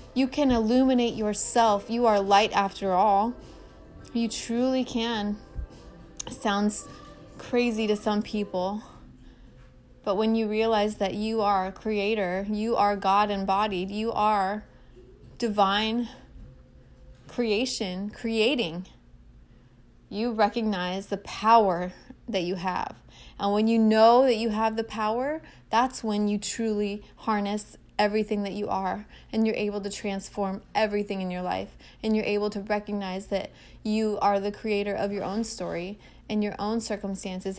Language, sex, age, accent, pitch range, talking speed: English, female, 20-39, American, 200-220 Hz, 140 wpm